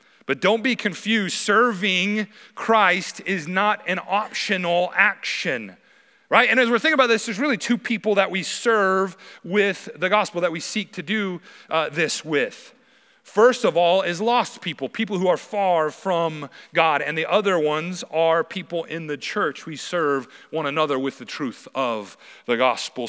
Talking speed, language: 175 wpm, English